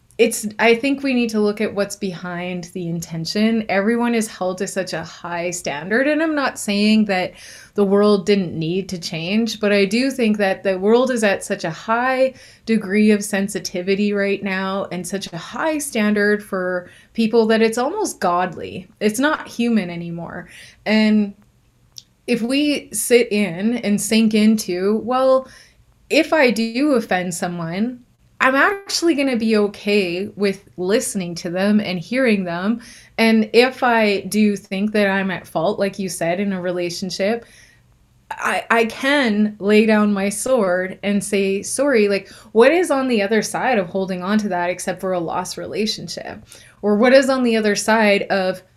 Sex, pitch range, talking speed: female, 190-235 Hz, 170 wpm